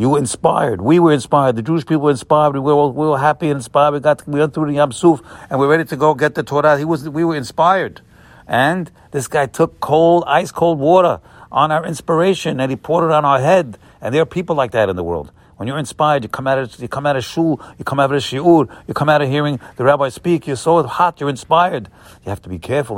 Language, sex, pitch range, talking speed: English, male, 120-160 Hz, 265 wpm